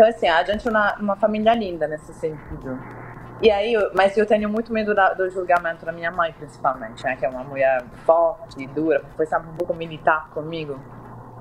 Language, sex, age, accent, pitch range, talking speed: Portuguese, female, 20-39, Italian, 160-205 Hz, 210 wpm